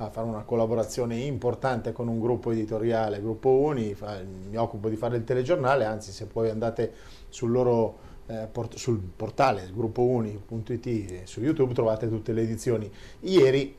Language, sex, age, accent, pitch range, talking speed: Italian, male, 30-49, native, 110-130 Hz, 155 wpm